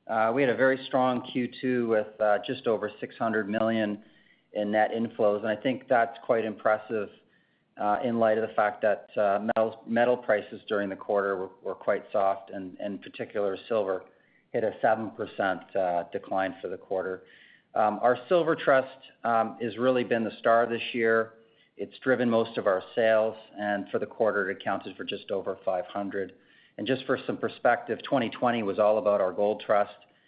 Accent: American